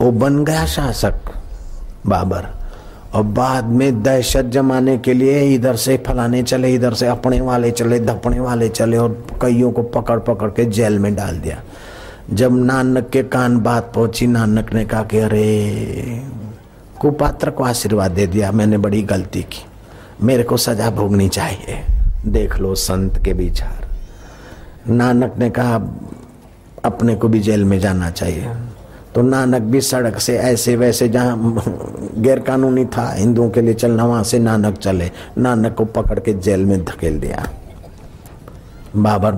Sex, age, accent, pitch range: male, 50-69, native, 100-125 Hz